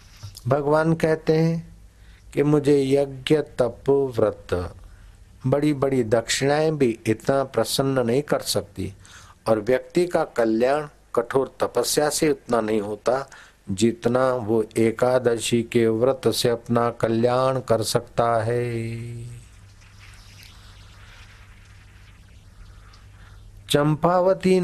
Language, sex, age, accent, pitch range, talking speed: Hindi, male, 60-79, native, 100-135 Hz, 95 wpm